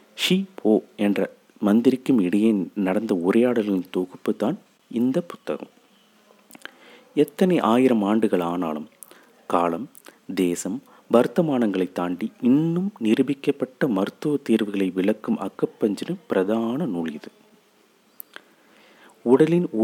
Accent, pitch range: native, 105-140 Hz